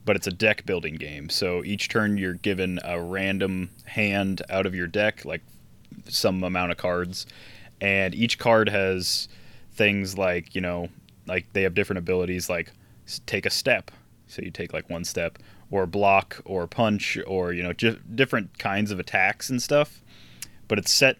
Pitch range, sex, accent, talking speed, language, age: 90-110 Hz, male, American, 175 wpm, English, 20-39